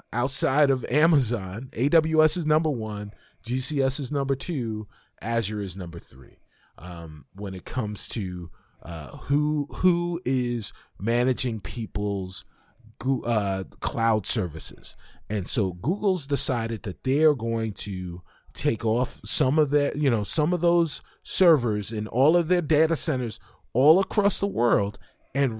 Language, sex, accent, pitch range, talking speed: English, male, American, 100-140 Hz, 140 wpm